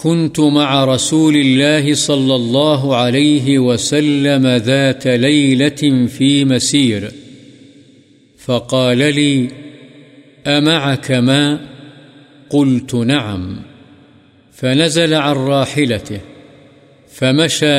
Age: 50-69